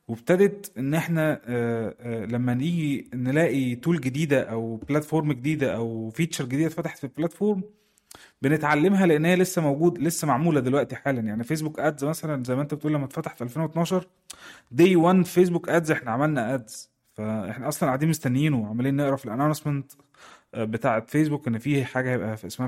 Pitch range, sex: 125-160 Hz, male